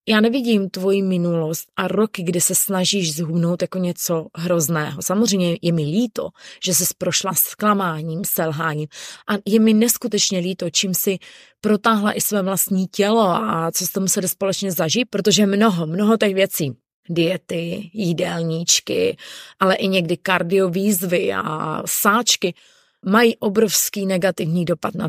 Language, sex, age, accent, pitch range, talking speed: Czech, female, 20-39, native, 170-215 Hz, 140 wpm